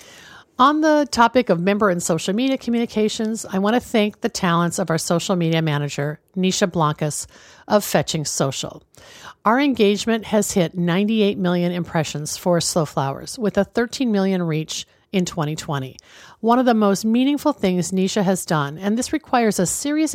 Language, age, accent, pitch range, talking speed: English, 50-69, American, 165-225 Hz, 165 wpm